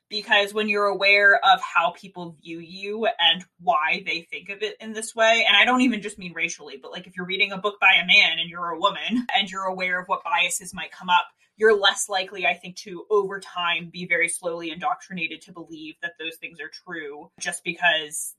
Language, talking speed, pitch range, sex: English, 225 wpm, 175-210 Hz, female